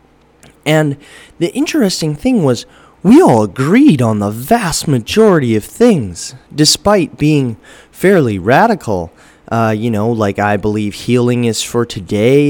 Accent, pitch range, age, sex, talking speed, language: American, 105-125 Hz, 30-49, male, 135 wpm, English